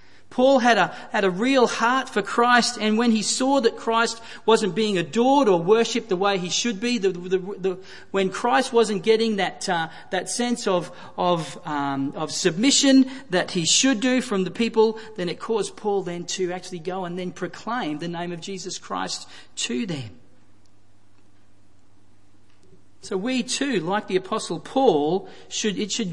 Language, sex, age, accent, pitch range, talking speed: English, male, 40-59, Australian, 155-220 Hz, 170 wpm